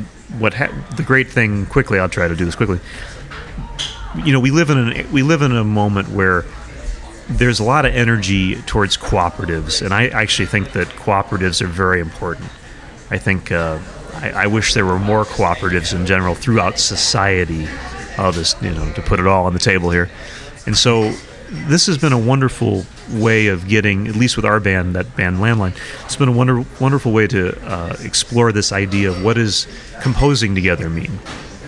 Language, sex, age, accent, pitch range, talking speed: English, male, 30-49, American, 95-120 Hz, 190 wpm